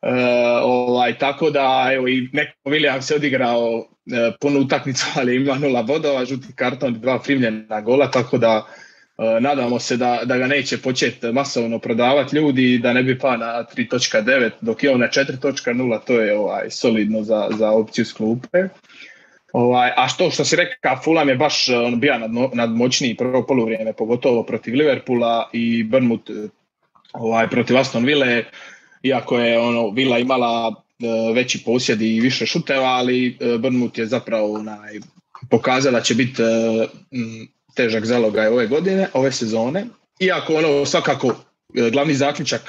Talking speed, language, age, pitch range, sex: 155 wpm, Croatian, 20-39, 115-135 Hz, male